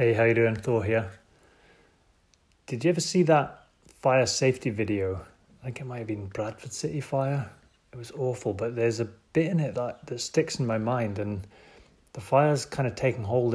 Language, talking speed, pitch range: English, 205 wpm, 110-140 Hz